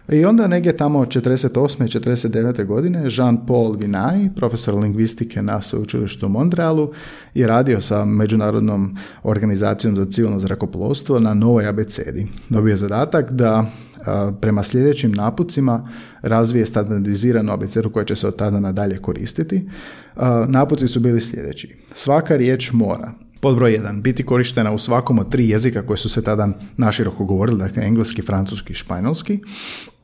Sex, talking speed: male, 150 wpm